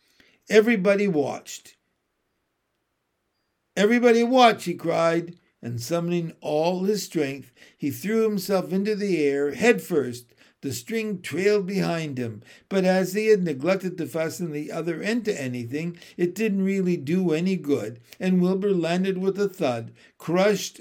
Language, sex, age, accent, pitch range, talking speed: English, male, 60-79, American, 150-200 Hz, 140 wpm